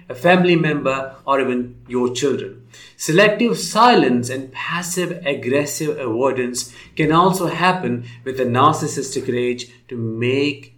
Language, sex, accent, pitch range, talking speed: English, male, Indian, 125-160 Hz, 120 wpm